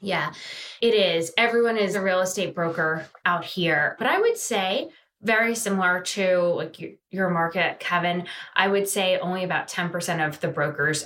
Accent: American